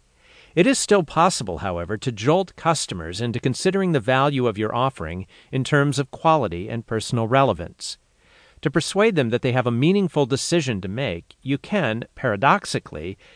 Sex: male